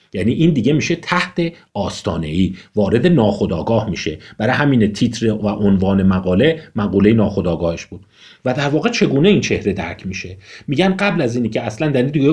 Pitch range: 105-165 Hz